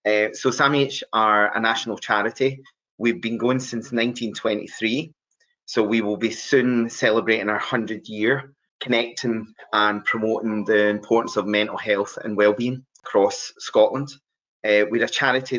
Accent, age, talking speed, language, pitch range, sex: British, 30-49, 140 wpm, English, 105-120 Hz, male